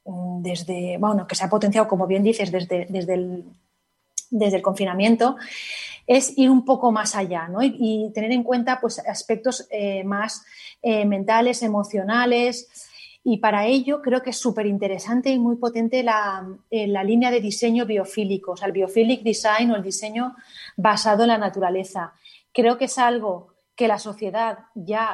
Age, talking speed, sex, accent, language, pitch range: 30-49, 165 wpm, female, Spanish, Spanish, 200-240 Hz